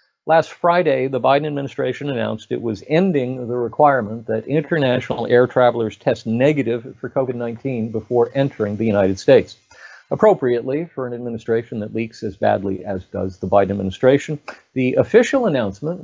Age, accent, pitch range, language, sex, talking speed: 50-69, American, 110-145 Hz, English, male, 150 wpm